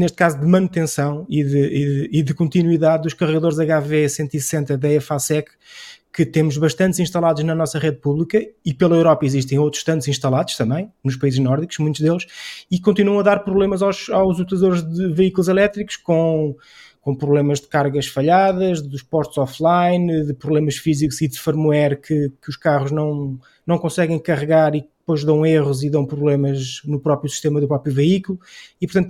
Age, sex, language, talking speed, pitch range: 20-39, male, Portuguese, 175 wpm, 155-190 Hz